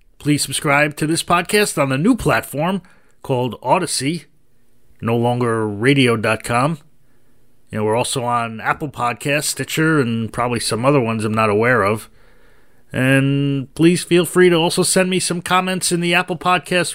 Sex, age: male, 30-49